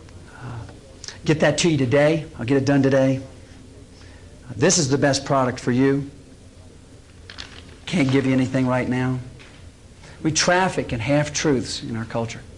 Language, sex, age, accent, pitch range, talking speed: English, male, 50-69, American, 95-140 Hz, 150 wpm